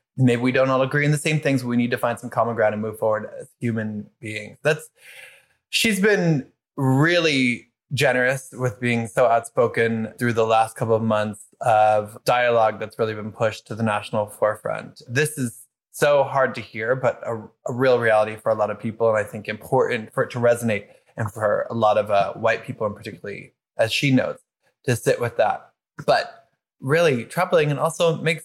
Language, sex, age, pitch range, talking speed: English, male, 20-39, 110-125 Hz, 200 wpm